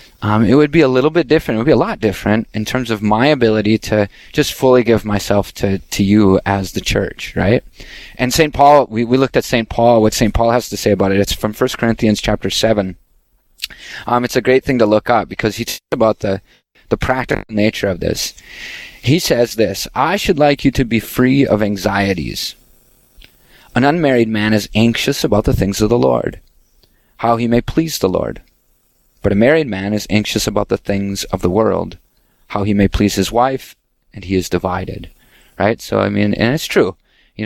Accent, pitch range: American, 100-125 Hz